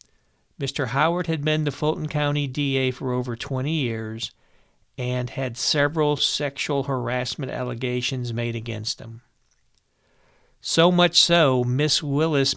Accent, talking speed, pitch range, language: American, 125 wpm, 120-150 Hz, English